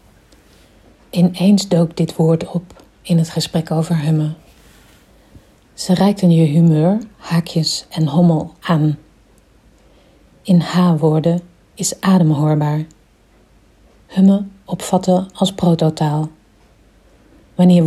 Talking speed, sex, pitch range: 90 wpm, female, 155-175 Hz